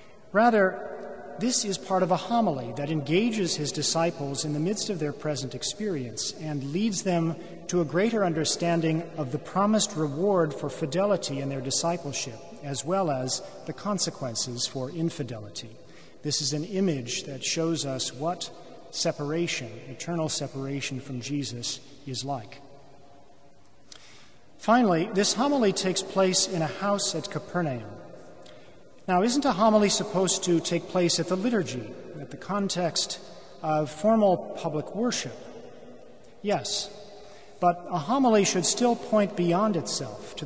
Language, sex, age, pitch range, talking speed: English, male, 40-59, 140-195 Hz, 140 wpm